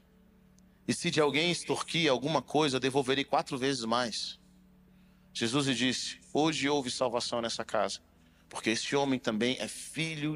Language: Portuguese